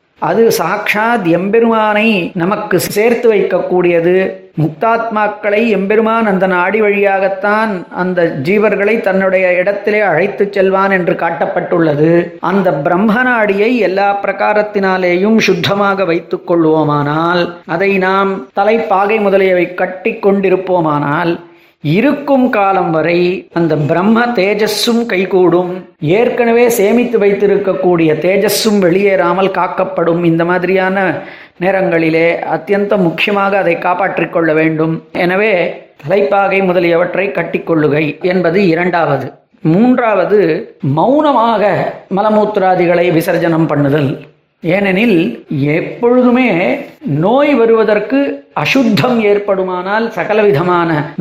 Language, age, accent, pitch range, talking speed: Tamil, 30-49, native, 170-205 Hz, 90 wpm